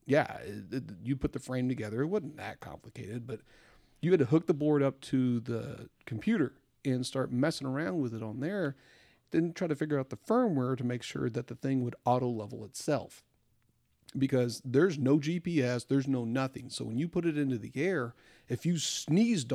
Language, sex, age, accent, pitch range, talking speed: English, male, 40-59, American, 115-140 Hz, 195 wpm